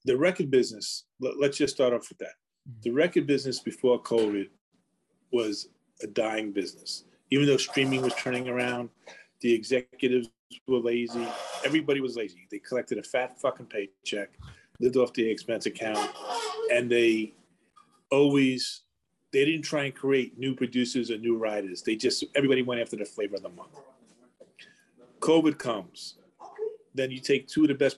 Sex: male